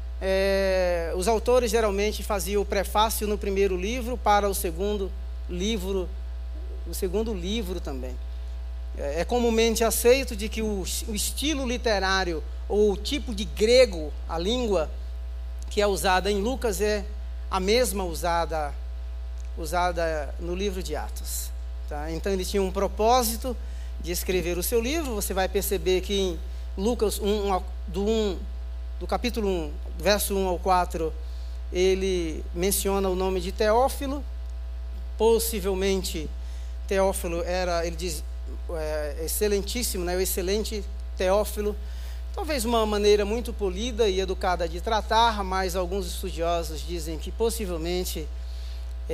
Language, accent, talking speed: Portuguese, Brazilian, 130 wpm